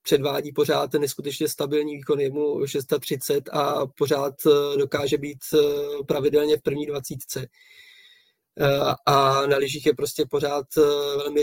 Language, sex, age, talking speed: Czech, male, 20-39, 115 wpm